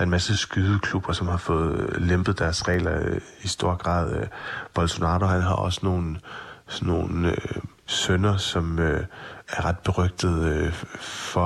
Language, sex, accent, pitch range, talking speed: Danish, male, native, 85-95 Hz, 140 wpm